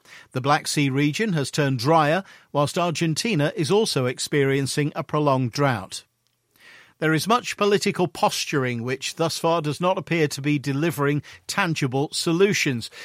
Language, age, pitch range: English, 50-69, 140-175 Hz